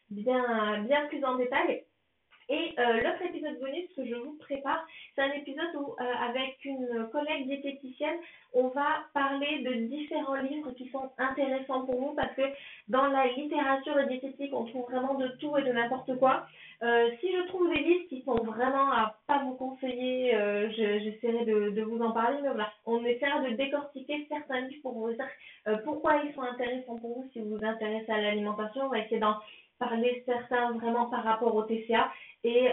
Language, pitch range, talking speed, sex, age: French, 230-275 Hz, 195 wpm, female, 30-49